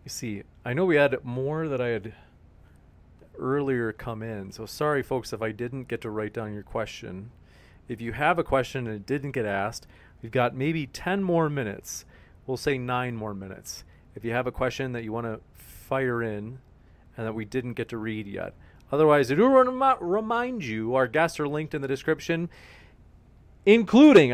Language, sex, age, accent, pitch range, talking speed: English, male, 30-49, American, 105-155 Hz, 195 wpm